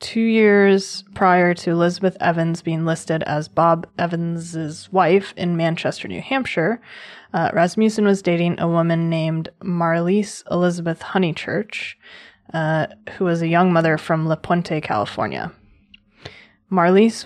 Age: 20-39